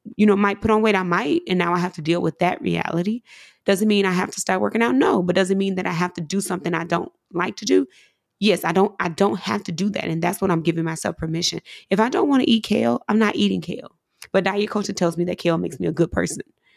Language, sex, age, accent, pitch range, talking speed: English, female, 20-39, American, 175-210 Hz, 285 wpm